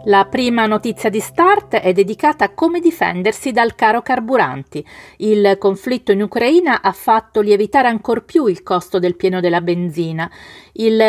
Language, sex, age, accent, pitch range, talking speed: Italian, female, 40-59, native, 185-235 Hz, 155 wpm